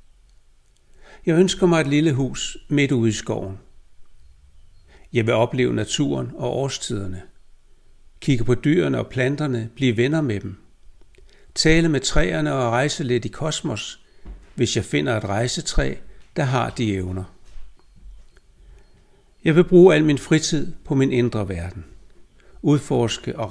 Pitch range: 95-145 Hz